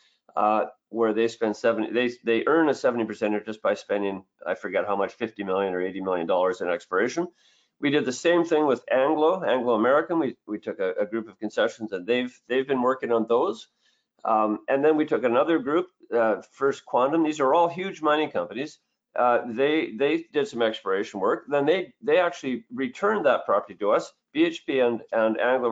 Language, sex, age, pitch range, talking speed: English, male, 50-69, 115-165 Hz, 200 wpm